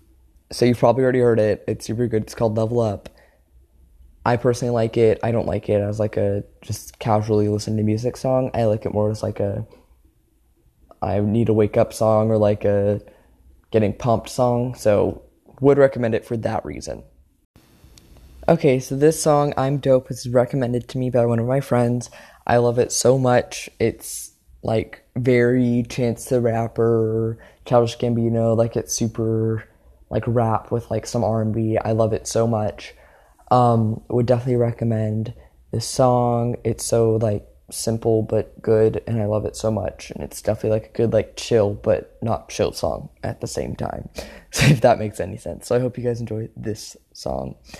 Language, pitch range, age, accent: English, 105-120 Hz, 20-39, American